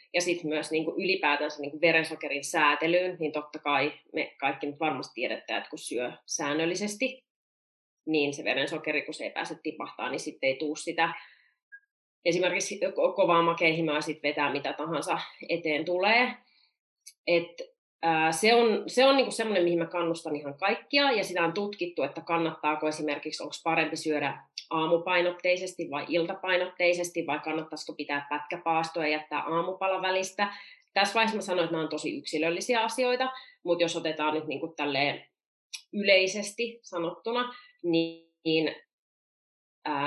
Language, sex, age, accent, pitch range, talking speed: Finnish, female, 30-49, native, 155-190 Hz, 140 wpm